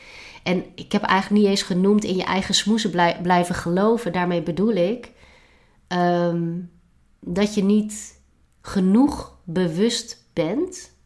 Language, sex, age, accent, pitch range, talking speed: Dutch, female, 30-49, Dutch, 170-205 Hz, 120 wpm